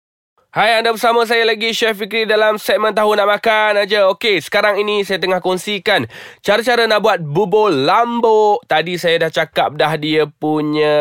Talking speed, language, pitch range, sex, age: 175 wpm, Malay, 145-185 Hz, male, 20-39